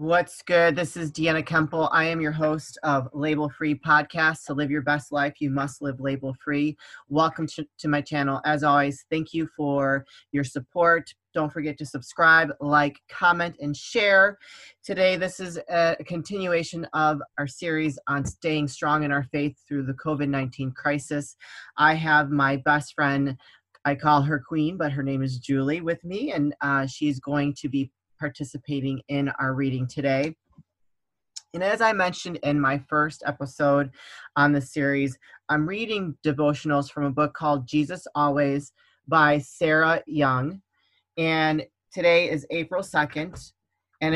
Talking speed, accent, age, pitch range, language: 160 wpm, American, 30-49, 140-160 Hz, English